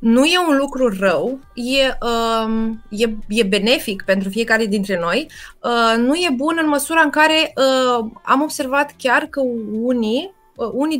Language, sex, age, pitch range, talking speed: Romanian, female, 20-39, 225-275 Hz, 165 wpm